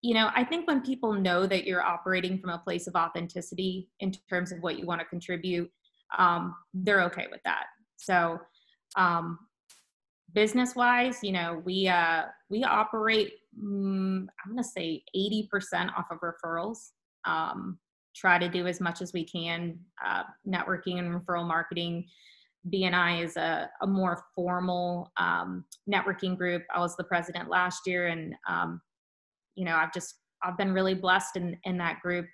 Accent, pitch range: American, 170-200 Hz